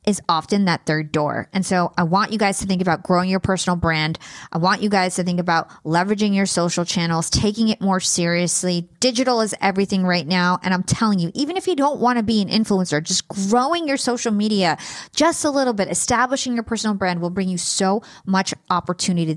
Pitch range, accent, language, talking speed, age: 180-230 Hz, American, English, 215 wpm, 20-39